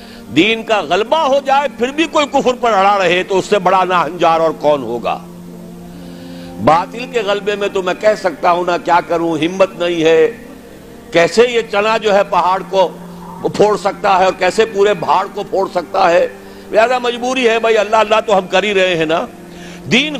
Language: Urdu